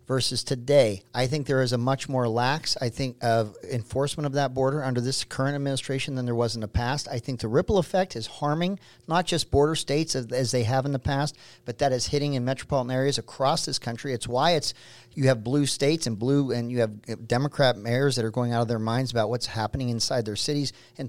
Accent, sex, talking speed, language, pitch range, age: American, male, 235 wpm, English, 125-175 Hz, 40-59